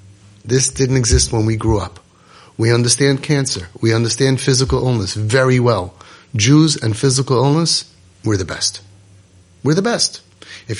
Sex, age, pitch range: male, 30-49, 105-145 Hz